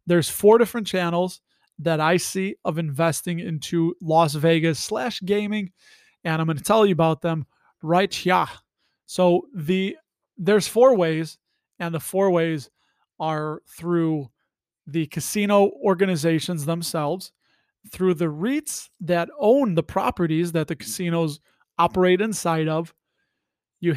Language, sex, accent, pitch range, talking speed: English, male, American, 160-195 Hz, 135 wpm